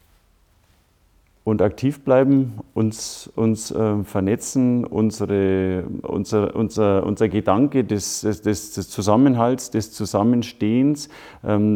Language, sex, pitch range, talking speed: German, male, 105-120 Hz, 95 wpm